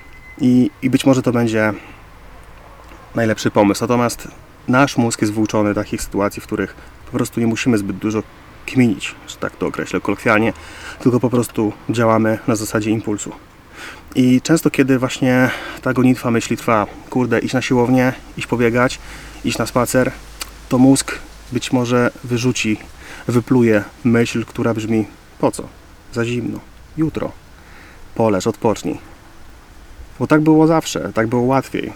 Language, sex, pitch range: Polish, male, 100-125 Hz